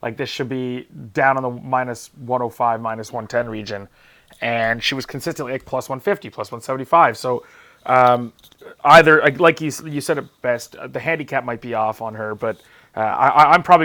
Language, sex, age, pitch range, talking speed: English, male, 30-49, 120-150 Hz, 180 wpm